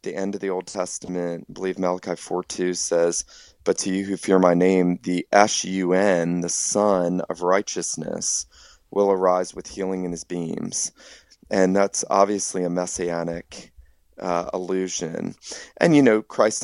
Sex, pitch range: male, 90-115 Hz